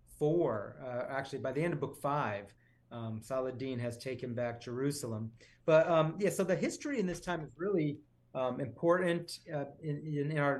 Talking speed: 170 wpm